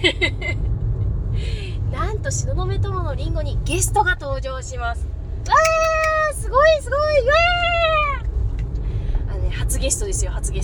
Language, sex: Japanese, female